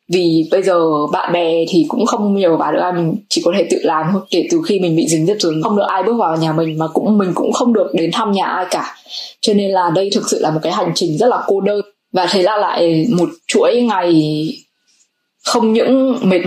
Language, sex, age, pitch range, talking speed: Vietnamese, female, 10-29, 165-225 Hz, 250 wpm